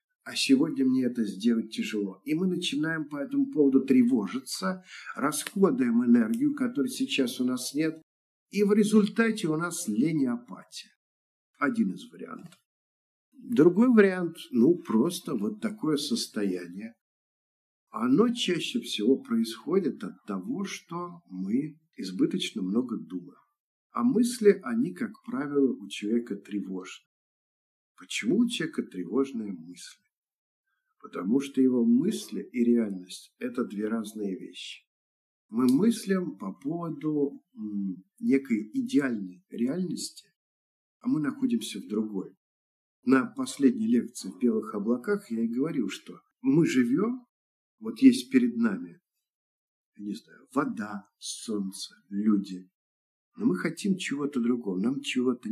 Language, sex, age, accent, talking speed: Russian, male, 50-69, native, 120 wpm